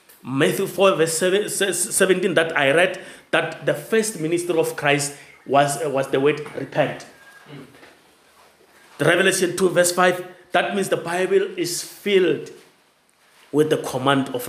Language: English